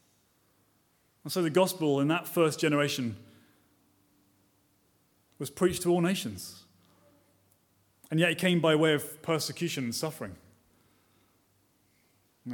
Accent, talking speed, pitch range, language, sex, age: British, 115 wpm, 110-155 Hz, English, male, 30-49